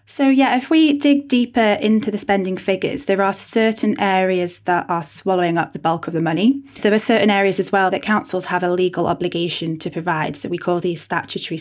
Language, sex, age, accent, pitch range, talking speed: English, female, 20-39, British, 170-205 Hz, 215 wpm